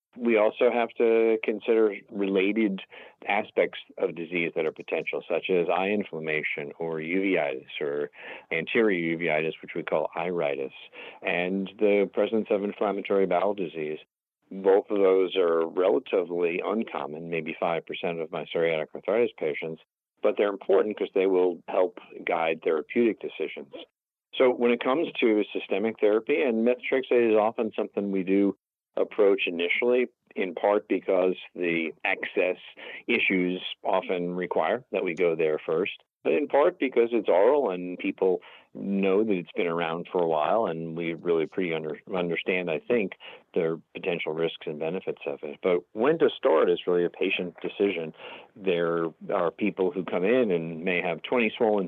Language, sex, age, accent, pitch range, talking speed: English, male, 50-69, American, 85-120 Hz, 155 wpm